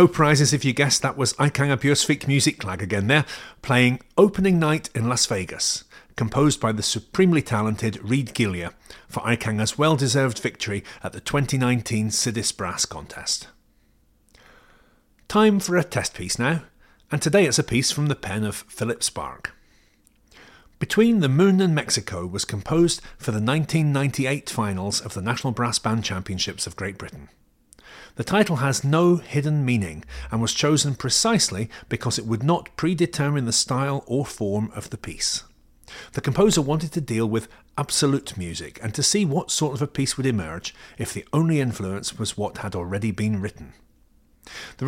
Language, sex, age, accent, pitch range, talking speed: English, male, 40-59, British, 105-145 Hz, 165 wpm